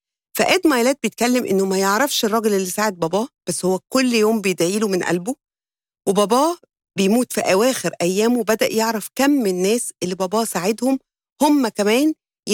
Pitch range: 185-240 Hz